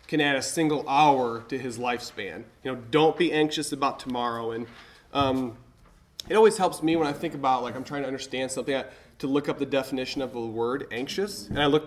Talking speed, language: 220 wpm, English